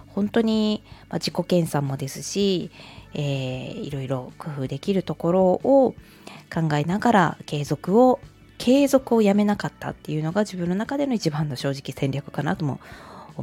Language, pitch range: Japanese, 150-225 Hz